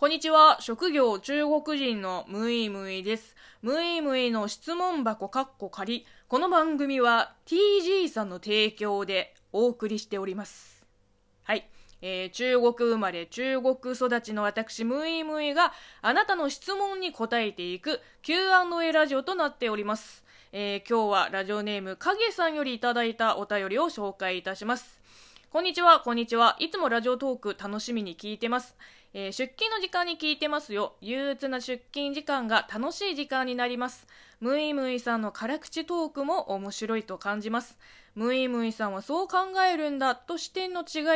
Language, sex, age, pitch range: Japanese, female, 20-39, 215-310 Hz